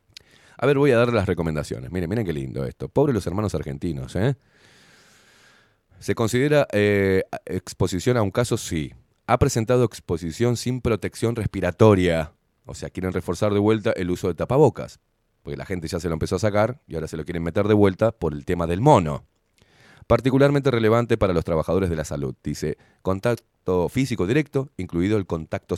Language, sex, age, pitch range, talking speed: Spanish, male, 30-49, 85-115 Hz, 180 wpm